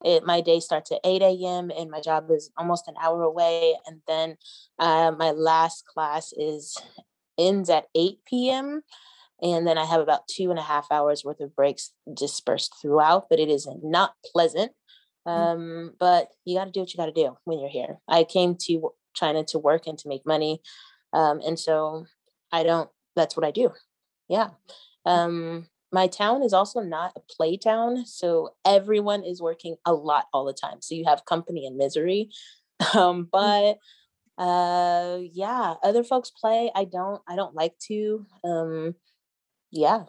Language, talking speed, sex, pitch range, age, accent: English, 180 wpm, female, 155-185 Hz, 20-39, American